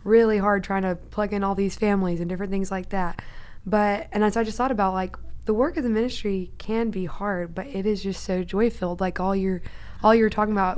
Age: 20-39